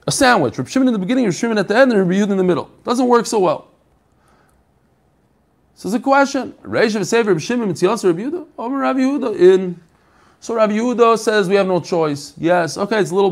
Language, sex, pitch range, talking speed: English, male, 155-220 Hz, 190 wpm